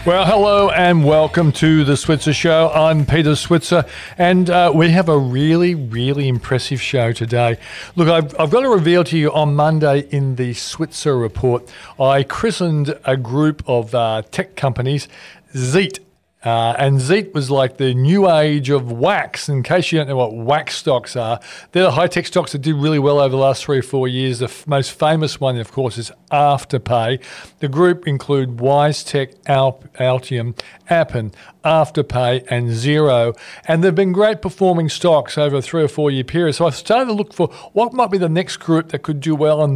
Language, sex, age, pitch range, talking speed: English, male, 40-59, 135-170 Hz, 195 wpm